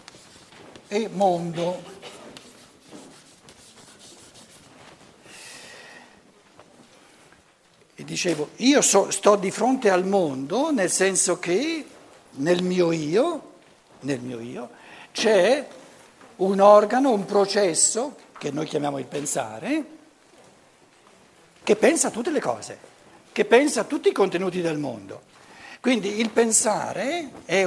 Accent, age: native, 60-79